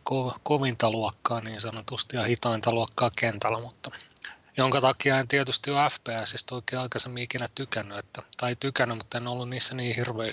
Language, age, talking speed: Finnish, 30-49, 170 wpm